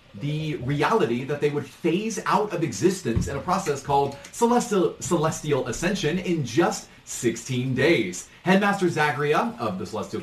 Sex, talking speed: male, 145 wpm